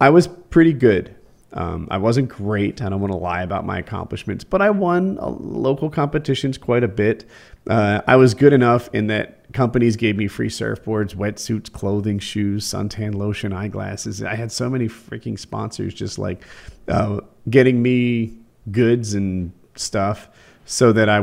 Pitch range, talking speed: 105-135 Hz, 165 wpm